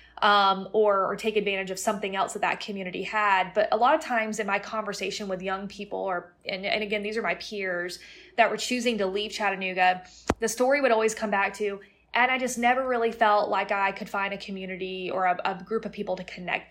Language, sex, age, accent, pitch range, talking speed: English, female, 20-39, American, 190-220 Hz, 230 wpm